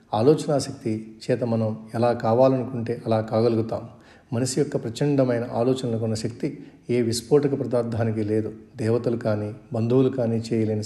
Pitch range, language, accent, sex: 110-125 Hz, Telugu, native, male